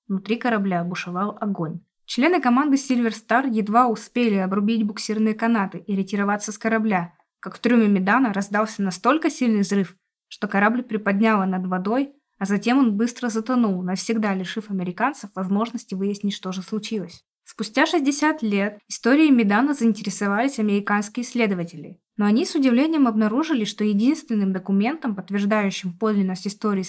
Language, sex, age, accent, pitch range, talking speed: Russian, female, 20-39, native, 200-240 Hz, 140 wpm